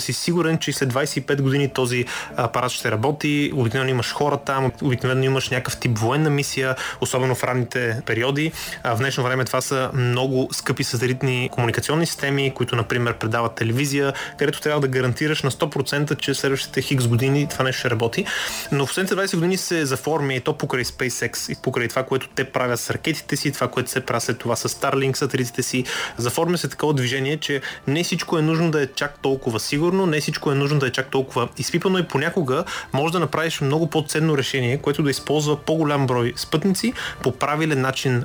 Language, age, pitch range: Bulgarian, 20-39, 125-150 Hz